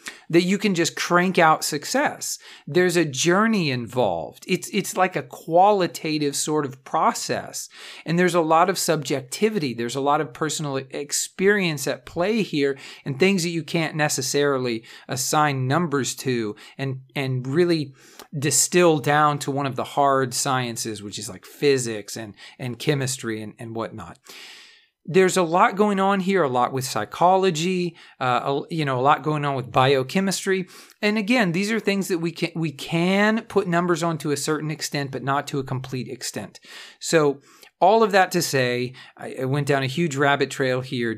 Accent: American